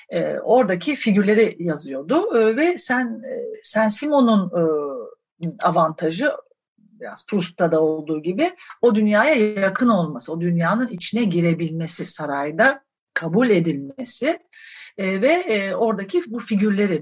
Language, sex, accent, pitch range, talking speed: Turkish, female, native, 175-255 Hz, 115 wpm